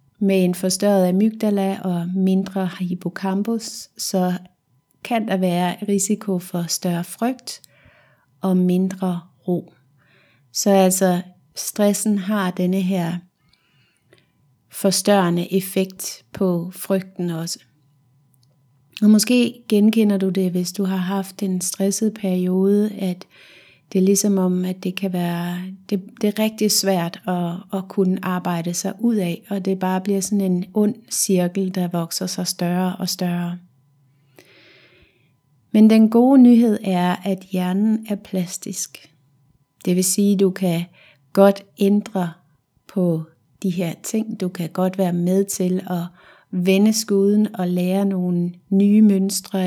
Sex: female